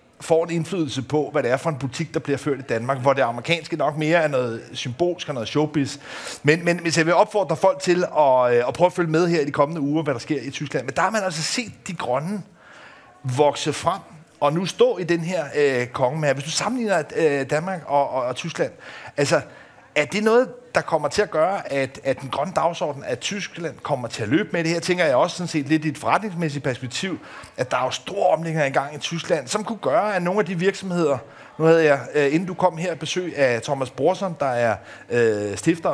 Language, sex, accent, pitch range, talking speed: Danish, male, native, 140-180 Hz, 240 wpm